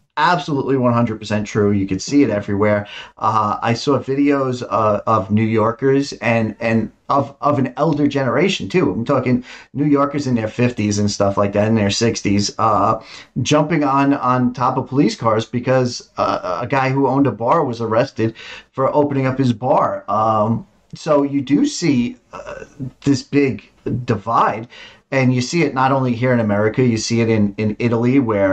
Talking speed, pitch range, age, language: 185 wpm, 110-140 Hz, 30-49, English